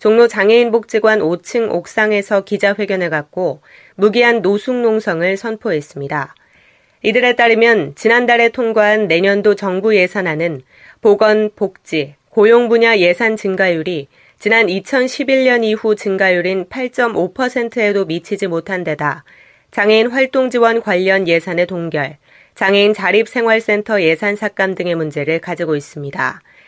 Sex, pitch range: female, 180-230 Hz